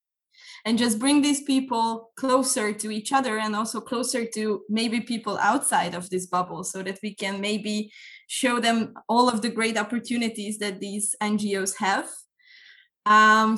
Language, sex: English, female